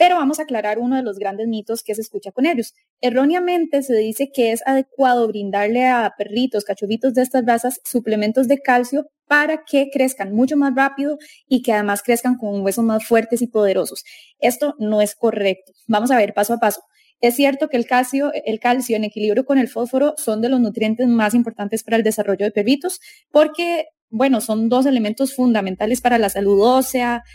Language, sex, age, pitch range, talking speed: English, female, 20-39, 210-260 Hz, 195 wpm